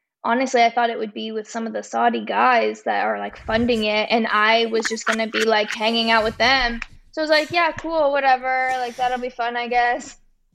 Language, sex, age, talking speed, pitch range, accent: English, female, 10-29, 240 wpm, 230-270 Hz, American